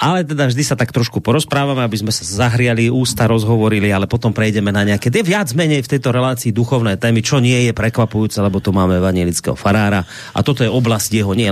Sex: male